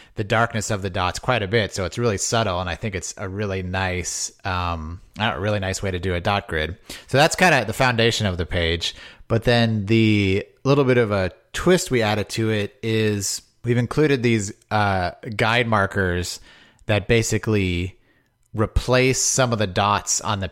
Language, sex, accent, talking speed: English, male, American, 190 wpm